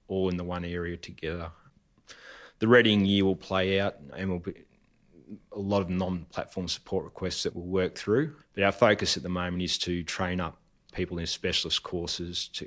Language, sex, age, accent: English, male, 30-49, Australian